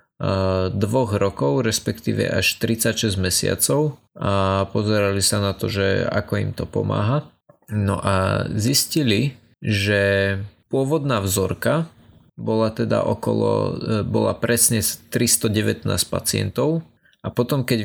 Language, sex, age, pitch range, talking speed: Slovak, male, 20-39, 100-120 Hz, 105 wpm